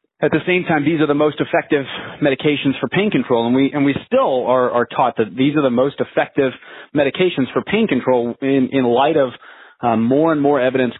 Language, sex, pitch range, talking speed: English, male, 115-140 Hz, 220 wpm